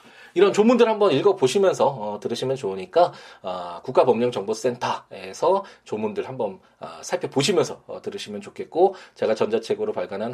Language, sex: Korean, male